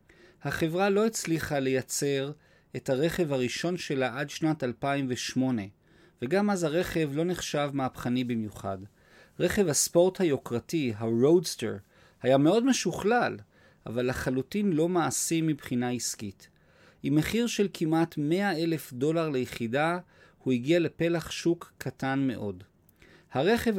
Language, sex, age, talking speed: Hebrew, male, 40-59, 115 wpm